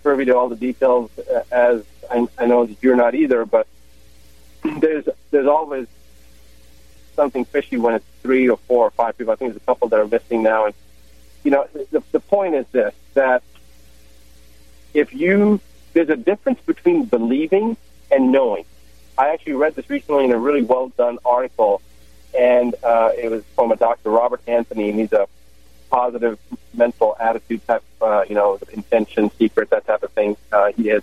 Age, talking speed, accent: 40-59, 180 wpm, American